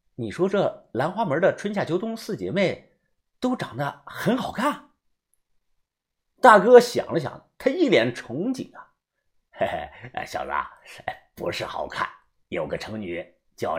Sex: male